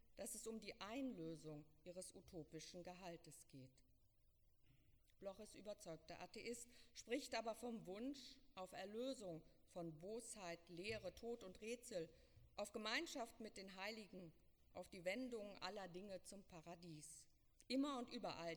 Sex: female